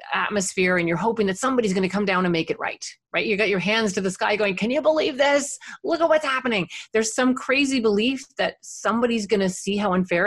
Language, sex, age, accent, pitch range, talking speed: English, female, 30-49, American, 185-260 Hz, 245 wpm